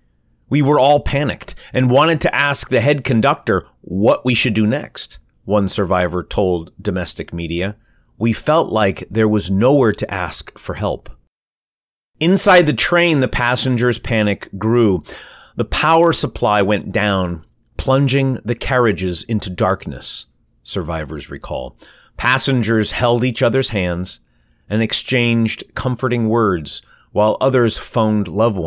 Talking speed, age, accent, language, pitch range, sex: 130 wpm, 30-49, American, English, 95-120 Hz, male